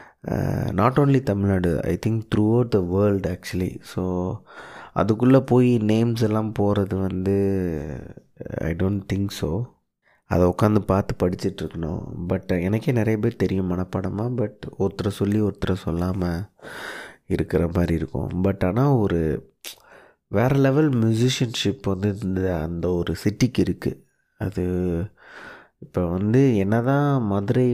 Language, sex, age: Tamil, male, 20-39